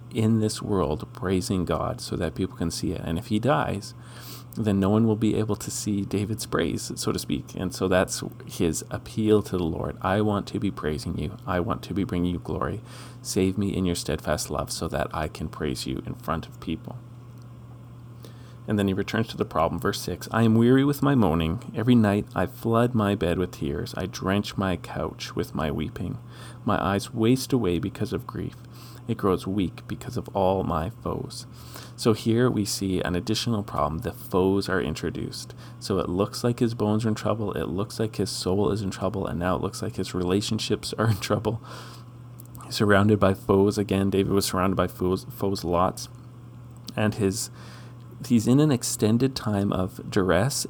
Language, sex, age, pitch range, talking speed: English, male, 40-59, 95-120 Hz, 200 wpm